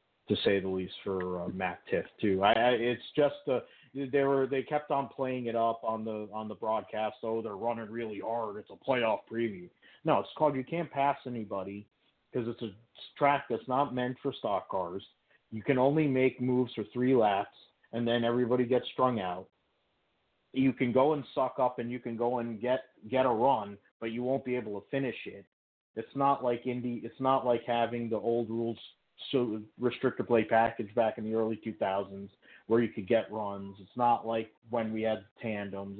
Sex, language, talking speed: male, English, 205 wpm